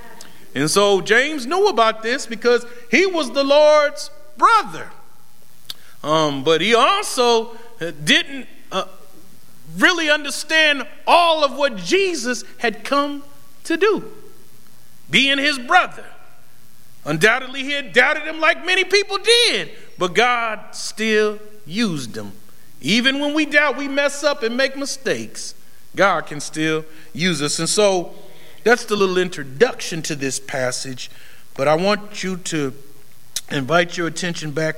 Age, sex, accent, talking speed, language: 40-59, male, American, 135 wpm, English